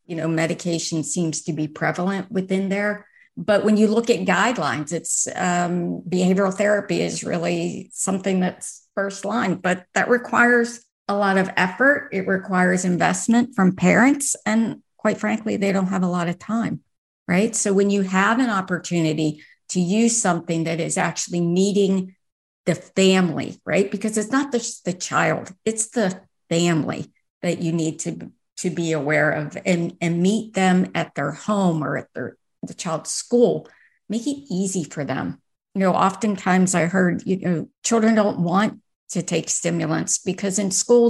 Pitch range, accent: 170-210 Hz, American